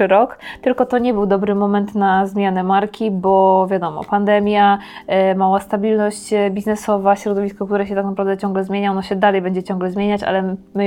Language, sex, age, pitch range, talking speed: Polish, female, 20-39, 195-215 Hz, 170 wpm